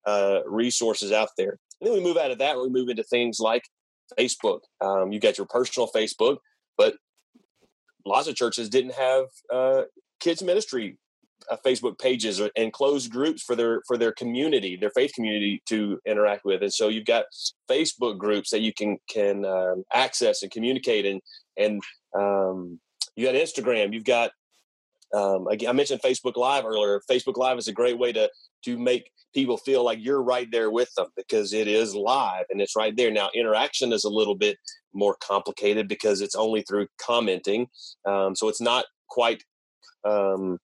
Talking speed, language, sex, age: 180 wpm, English, male, 30-49